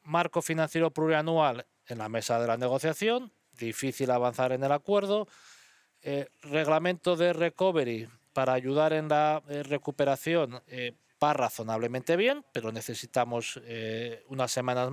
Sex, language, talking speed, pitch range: male, Spanish, 130 wpm, 125-155 Hz